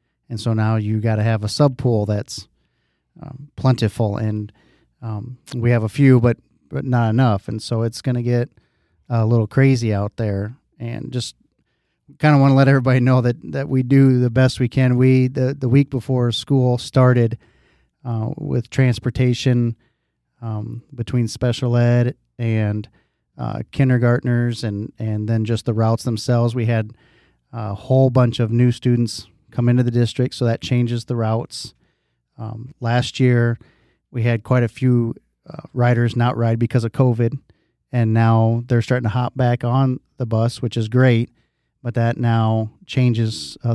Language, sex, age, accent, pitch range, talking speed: English, male, 40-59, American, 115-125 Hz, 170 wpm